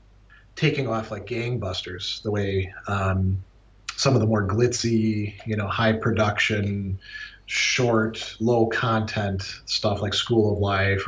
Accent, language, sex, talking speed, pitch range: American, English, male, 130 wpm, 100-120 Hz